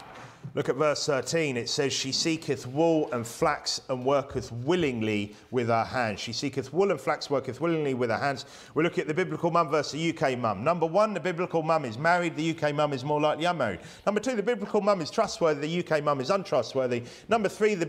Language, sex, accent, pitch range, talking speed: English, male, British, 130-185 Hz, 225 wpm